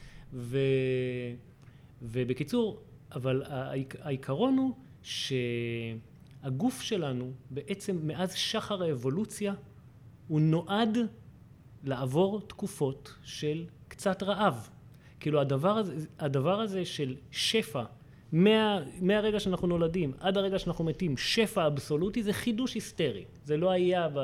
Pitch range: 135-190 Hz